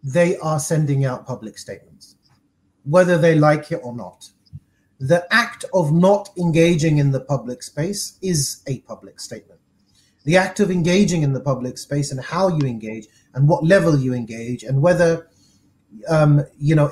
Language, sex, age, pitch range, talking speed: English, male, 30-49, 130-170 Hz, 165 wpm